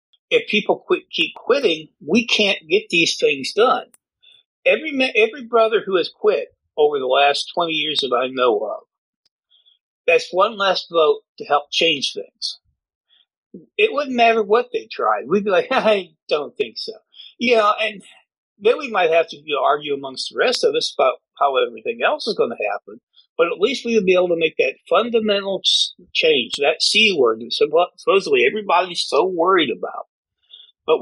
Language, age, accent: English, 50-69, American